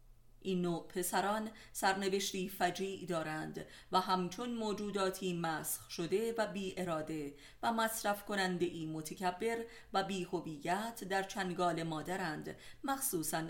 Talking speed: 110 wpm